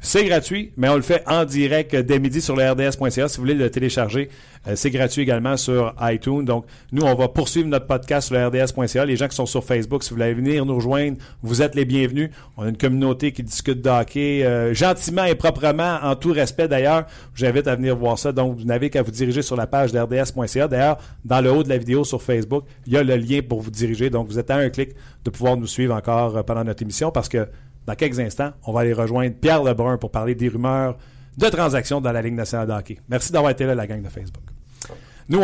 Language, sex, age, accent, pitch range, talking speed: French, male, 50-69, Canadian, 120-140 Hz, 245 wpm